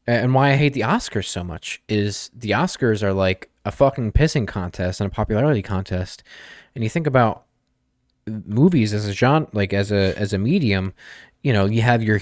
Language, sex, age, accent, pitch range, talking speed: English, male, 20-39, American, 100-135 Hz, 195 wpm